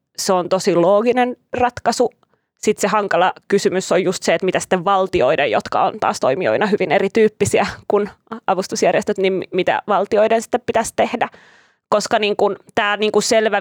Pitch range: 195-235 Hz